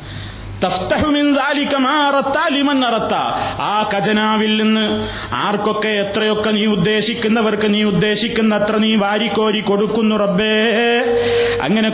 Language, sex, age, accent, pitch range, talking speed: Malayalam, male, 30-49, native, 210-230 Hz, 65 wpm